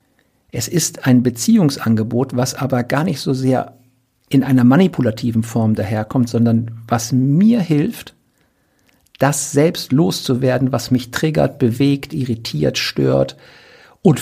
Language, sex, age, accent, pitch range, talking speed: German, male, 50-69, German, 110-135 Hz, 120 wpm